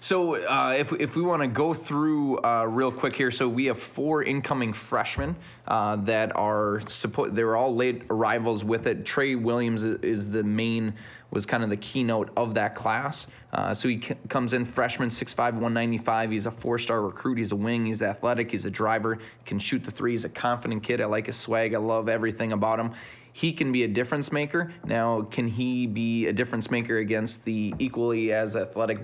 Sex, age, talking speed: male, 20-39, 210 wpm